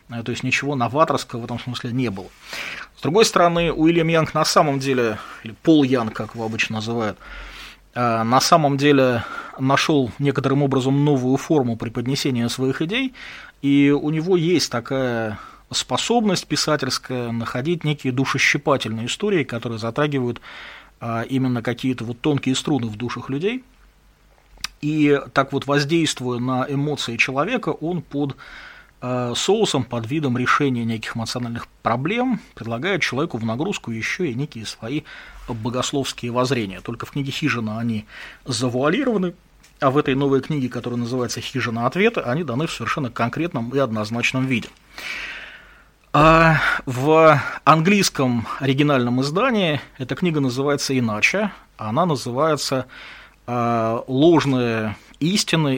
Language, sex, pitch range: English, male, 120-150 Hz